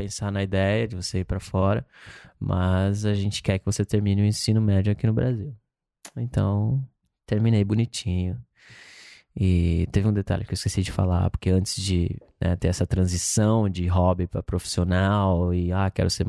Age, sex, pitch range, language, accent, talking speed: 20-39, male, 90-115 Hz, Portuguese, Brazilian, 175 wpm